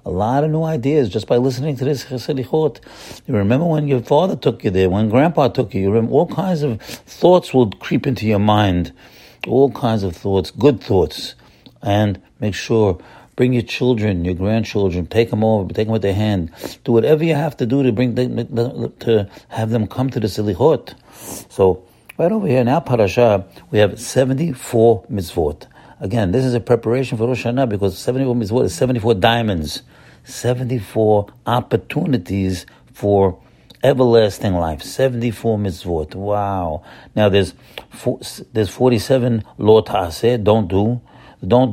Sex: male